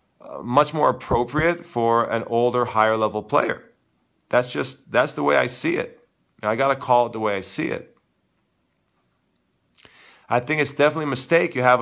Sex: male